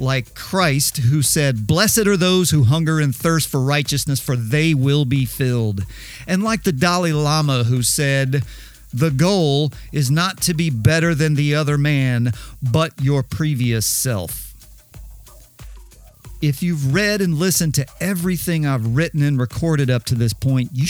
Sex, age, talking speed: male, 50-69, 160 wpm